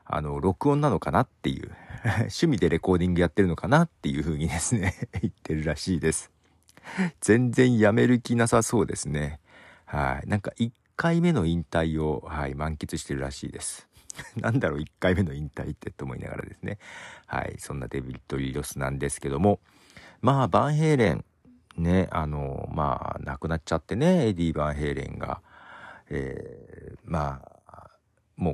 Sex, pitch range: male, 75-115 Hz